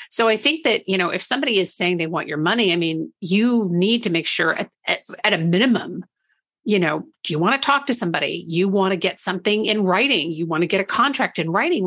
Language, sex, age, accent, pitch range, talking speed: English, female, 50-69, American, 175-230 Hz, 250 wpm